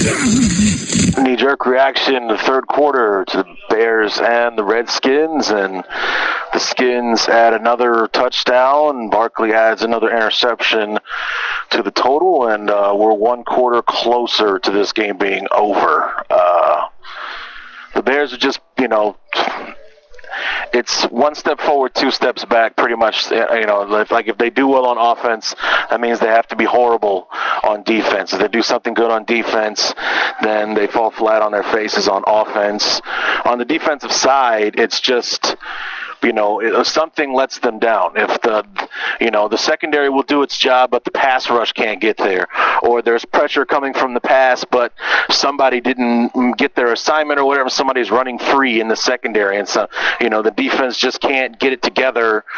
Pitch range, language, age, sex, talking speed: 110-130 Hz, English, 30-49, male, 170 wpm